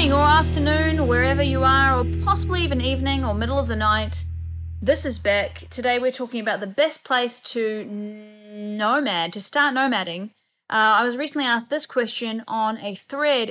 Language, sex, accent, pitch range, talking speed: English, female, Australian, 190-275 Hz, 175 wpm